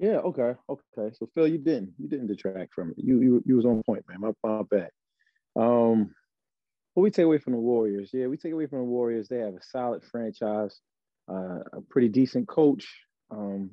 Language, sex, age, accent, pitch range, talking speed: English, male, 30-49, American, 105-130 Hz, 210 wpm